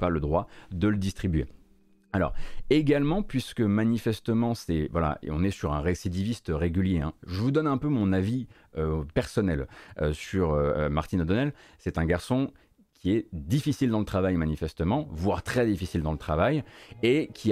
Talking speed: 175 wpm